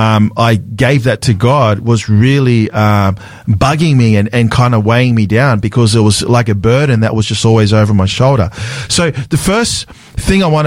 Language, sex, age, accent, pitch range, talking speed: English, male, 40-59, Australian, 110-135 Hz, 205 wpm